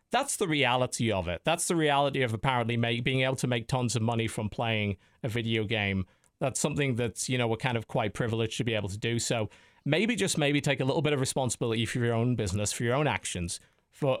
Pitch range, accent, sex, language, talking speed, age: 115-155 Hz, British, male, English, 240 wpm, 40-59